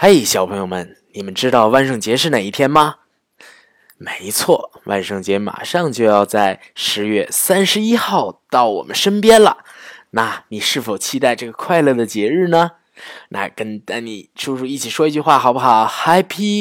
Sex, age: male, 20-39